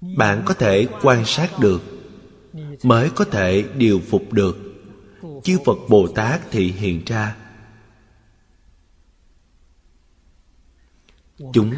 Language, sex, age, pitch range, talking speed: Vietnamese, male, 20-39, 90-130 Hz, 100 wpm